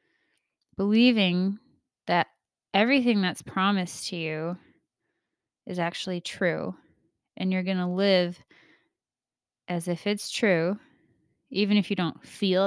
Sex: female